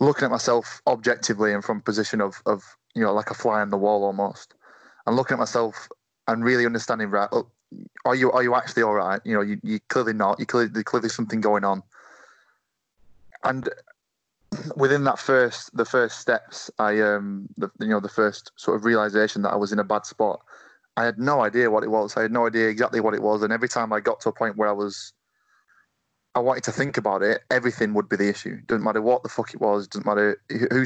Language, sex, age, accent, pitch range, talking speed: English, male, 20-39, British, 105-120 Hz, 225 wpm